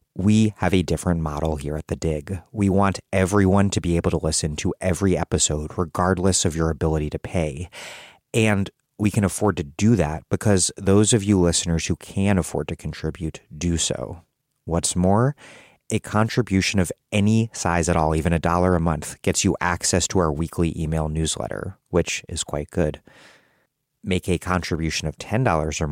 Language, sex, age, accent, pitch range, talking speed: English, male, 30-49, American, 80-100 Hz, 180 wpm